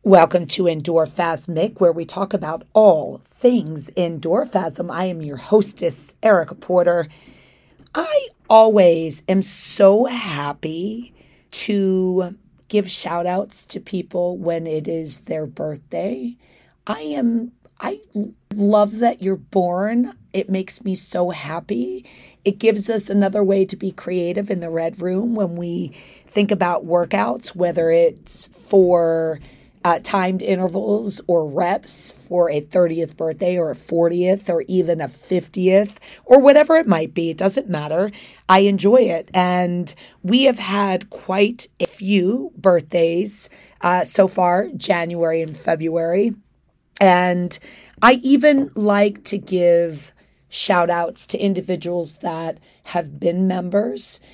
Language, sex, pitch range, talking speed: English, female, 170-205 Hz, 130 wpm